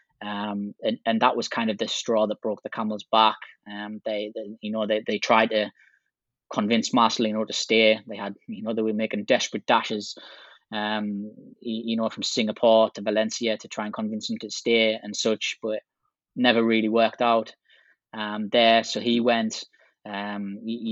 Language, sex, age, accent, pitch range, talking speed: English, male, 20-39, British, 110-115 Hz, 185 wpm